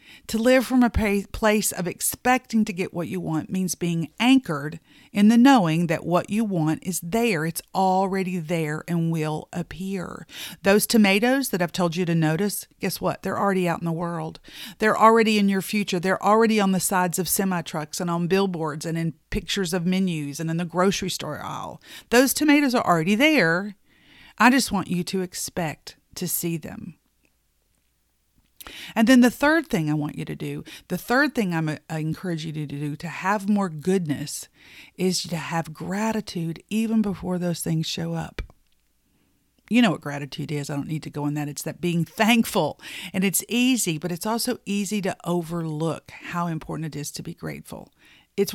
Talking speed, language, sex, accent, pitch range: 190 wpm, English, female, American, 160-210 Hz